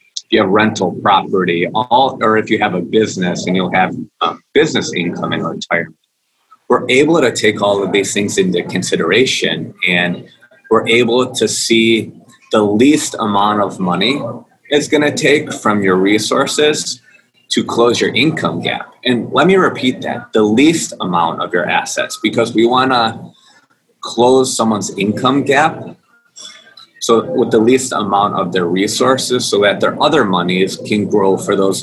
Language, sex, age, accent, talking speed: English, male, 30-49, American, 165 wpm